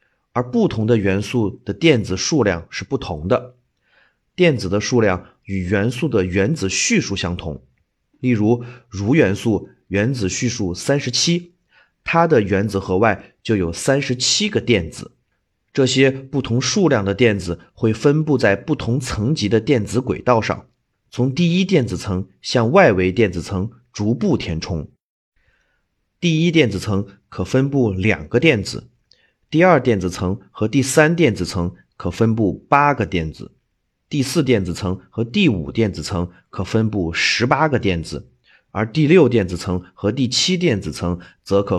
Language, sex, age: Chinese, male, 30-49